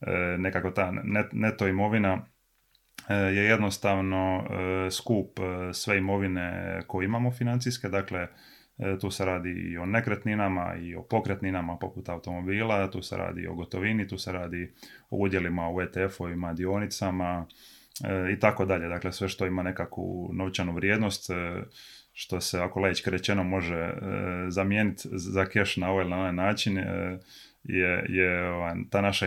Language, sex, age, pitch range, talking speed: Croatian, male, 20-39, 90-100 Hz, 130 wpm